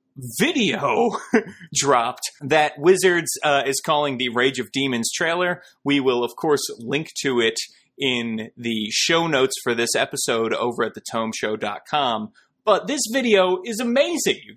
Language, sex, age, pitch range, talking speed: English, male, 30-49, 140-205 Hz, 145 wpm